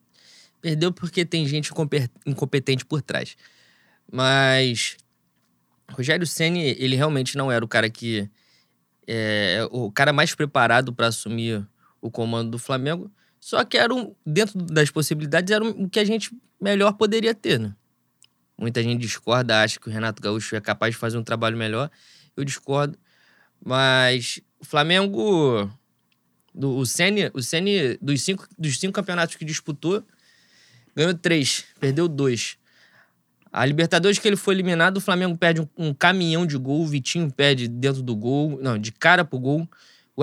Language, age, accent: Portuguese, 20-39, Brazilian